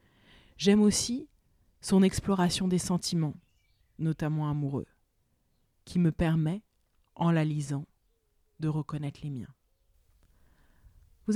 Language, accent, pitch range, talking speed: French, French, 145-170 Hz, 100 wpm